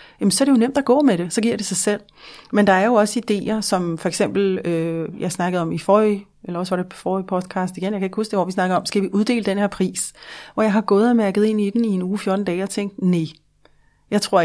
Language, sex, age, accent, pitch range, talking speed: Danish, female, 30-49, native, 180-215 Hz, 300 wpm